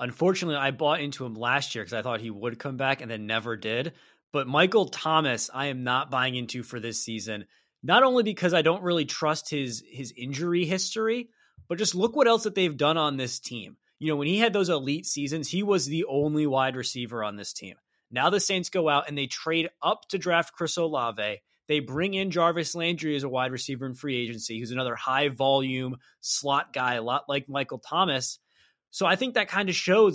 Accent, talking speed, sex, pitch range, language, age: American, 220 wpm, male, 130-170 Hz, English, 20-39